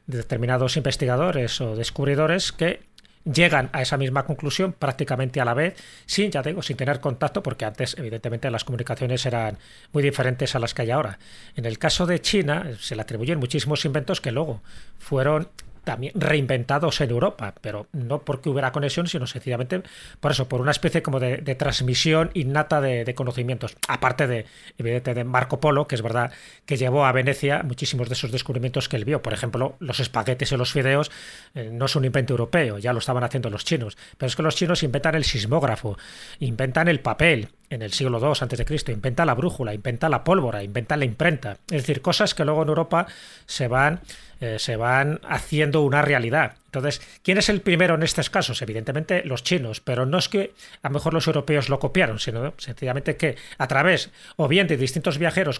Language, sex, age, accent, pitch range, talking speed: Spanish, male, 30-49, Spanish, 125-155 Hz, 195 wpm